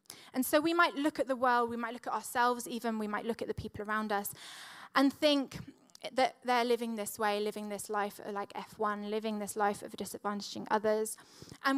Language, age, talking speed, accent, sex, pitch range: English, 20-39, 210 wpm, British, female, 210-240 Hz